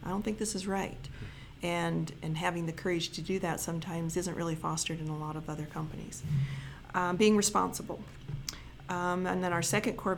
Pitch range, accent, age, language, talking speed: 165-195 Hz, American, 40-59, English, 195 wpm